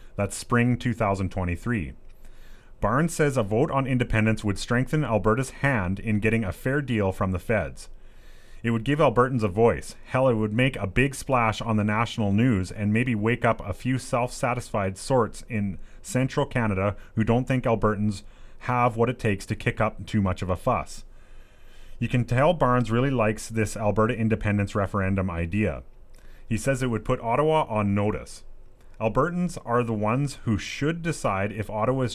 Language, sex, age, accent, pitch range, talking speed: English, male, 30-49, American, 105-125 Hz, 175 wpm